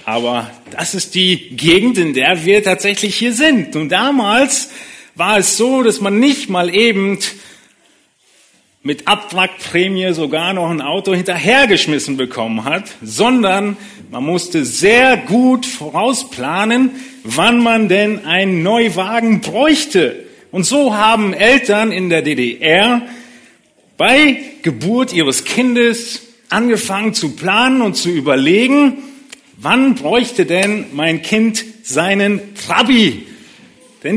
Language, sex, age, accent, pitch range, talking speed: German, male, 40-59, German, 185-255 Hz, 120 wpm